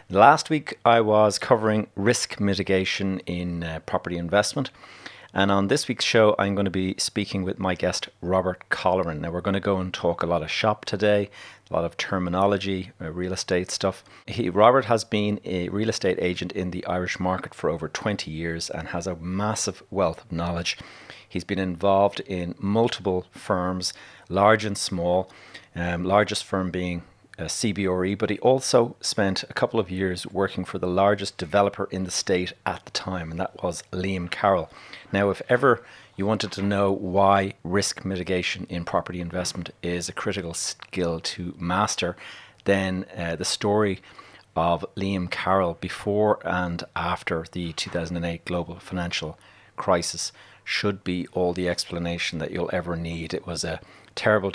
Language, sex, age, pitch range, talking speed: English, male, 40-59, 90-100 Hz, 170 wpm